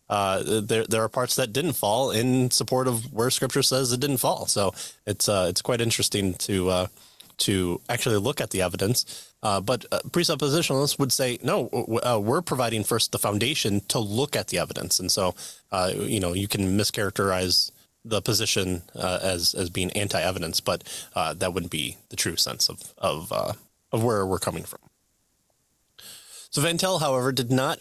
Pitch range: 100-130 Hz